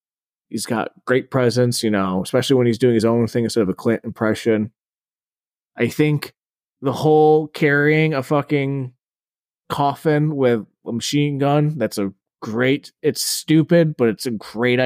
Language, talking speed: English, 160 wpm